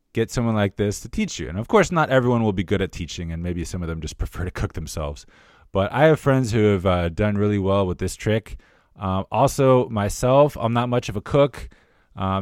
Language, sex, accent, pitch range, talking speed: English, male, American, 90-130 Hz, 240 wpm